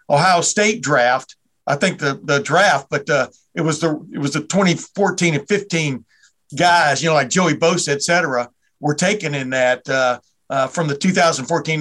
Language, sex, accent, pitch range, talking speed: English, male, American, 145-185 Hz, 185 wpm